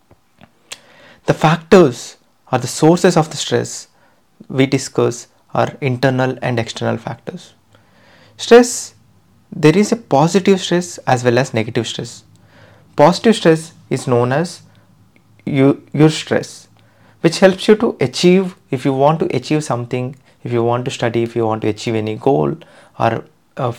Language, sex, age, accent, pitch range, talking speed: English, male, 30-49, Indian, 120-160 Hz, 150 wpm